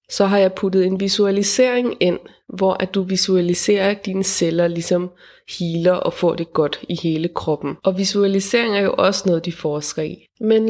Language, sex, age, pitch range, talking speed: Danish, female, 20-39, 185-210 Hz, 185 wpm